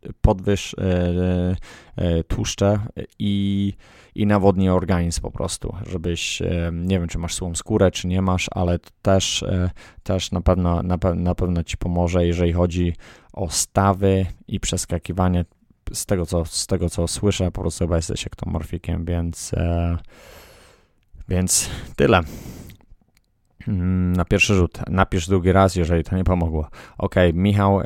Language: Polish